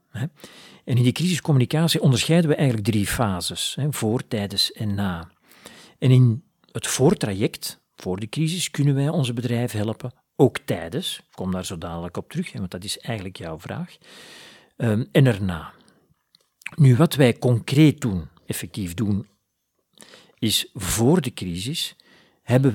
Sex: male